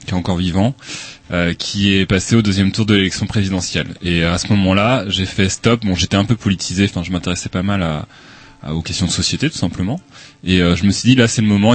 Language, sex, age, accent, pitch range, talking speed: French, male, 20-39, French, 90-115 Hz, 250 wpm